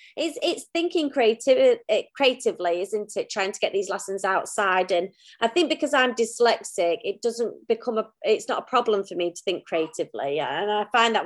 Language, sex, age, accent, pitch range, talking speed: English, female, 30-49, British, 190-230 Hz, 185 wpm